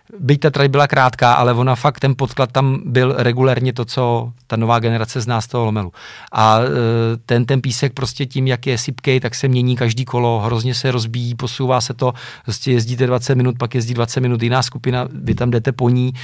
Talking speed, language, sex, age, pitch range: 215 wpm, Czech, male, 40-59, 120-135 Hz